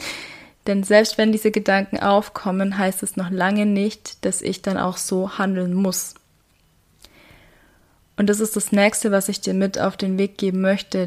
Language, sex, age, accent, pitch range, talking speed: German, female, 20-39, German, 190-205 Hz, 175 wpm